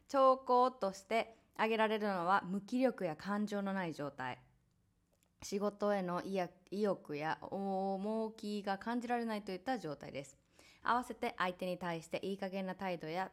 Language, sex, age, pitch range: Japanese, female, 20-39, 160-250 Hz